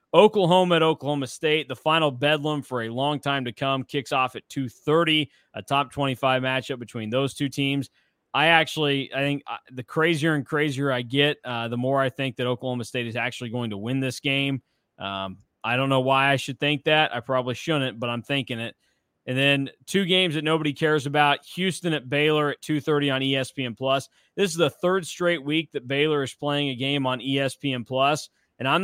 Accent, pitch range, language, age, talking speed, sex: American, 125-145 Hz, English, 20-39, 200 wpm, male